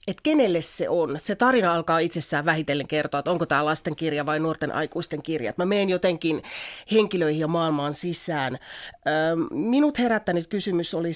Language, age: Finnish, 30-49